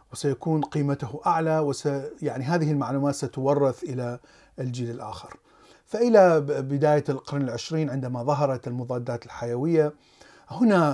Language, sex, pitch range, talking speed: Arabic, male, 130-160 Hz, 110 wpm